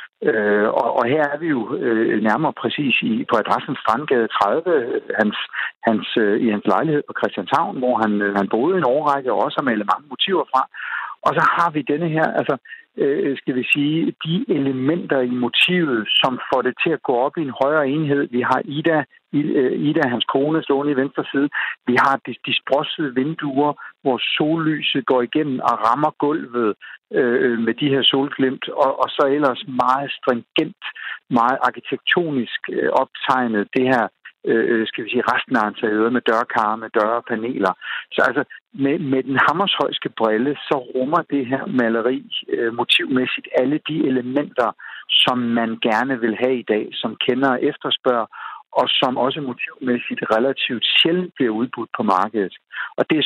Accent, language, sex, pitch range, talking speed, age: native, Danish, male, 120-155 Hz, 170 wpm, 60-79